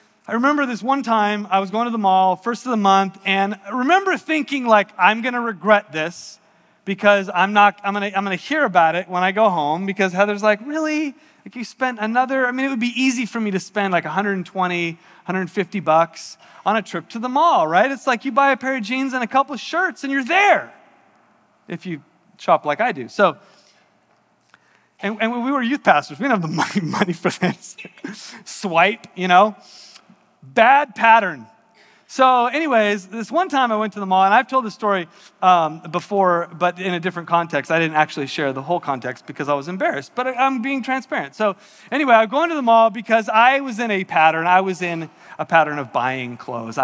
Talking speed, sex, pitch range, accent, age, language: 220 wpm, male, 180-260 Hz, American, 30-49, English